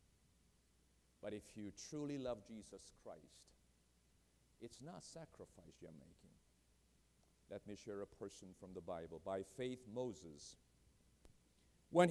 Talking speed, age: 120 wpm, 50-69